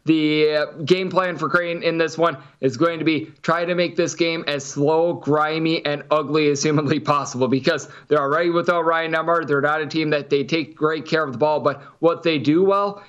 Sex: male